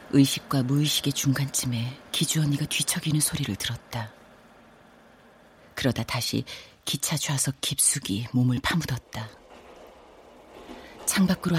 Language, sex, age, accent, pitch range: Korean, female, 40-59, native, 125-155 Hz